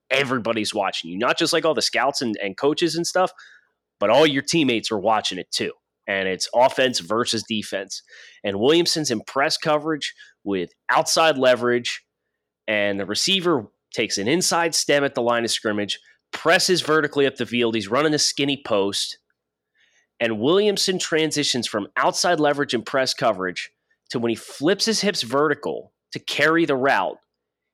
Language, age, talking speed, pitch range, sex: English, 30-49, 165 wpm, 110-155 Hz, male